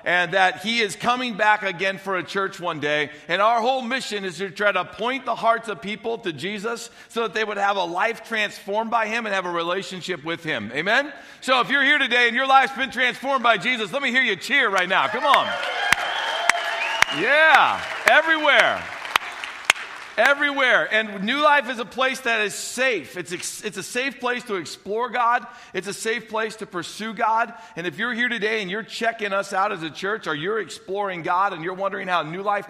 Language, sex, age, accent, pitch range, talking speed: English, male, 50-69, American, 175-230 Hz, 210 wpm